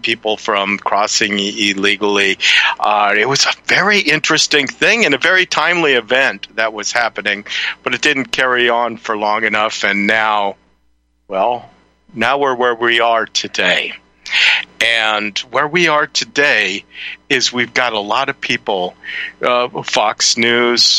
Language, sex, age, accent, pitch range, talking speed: English, male, 50-69, American, 110-135 Hz, 145 wpm